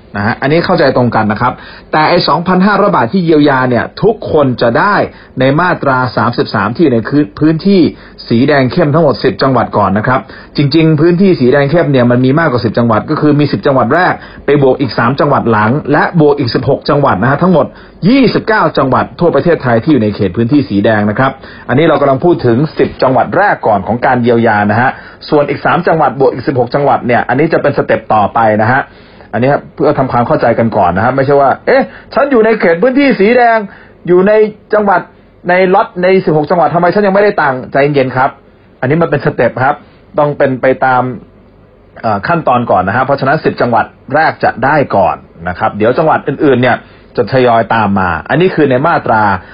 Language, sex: Thai, male